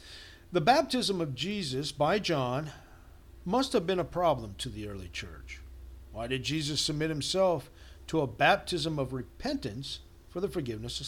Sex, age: male, 50-69